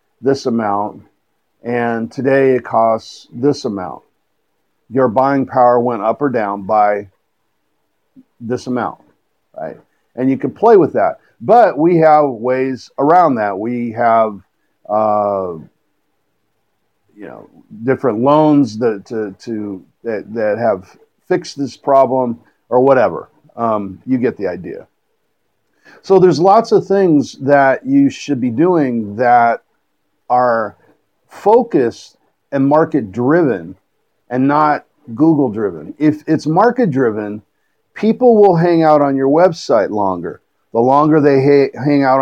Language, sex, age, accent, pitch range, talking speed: English, male, 50-69, American, 120-155 Hz, 125 wpm